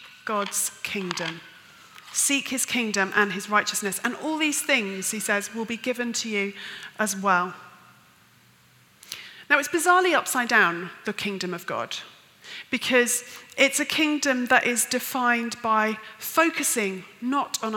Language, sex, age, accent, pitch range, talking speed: English, female, 30-49, British, 200-250 Hz, 140 wpm